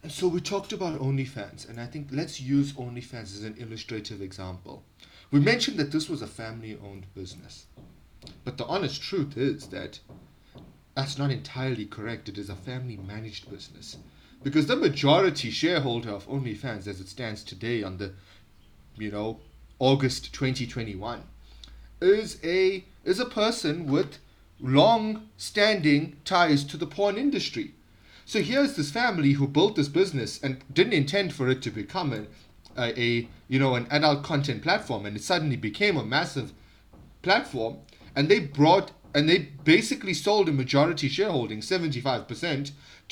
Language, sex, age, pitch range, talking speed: English, male, 30-49, 115-180 Hz, 155 wpm